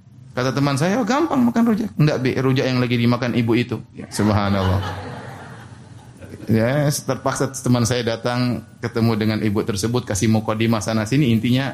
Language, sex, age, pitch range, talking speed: Indonesian, male, 30-49, 115-155 Hz, 155 wpm